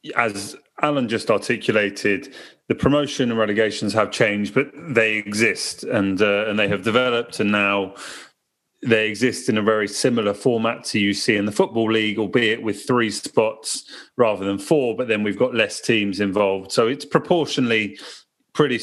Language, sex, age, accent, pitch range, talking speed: English, male, 30-49, British, 110-145 Hz, 165 wpm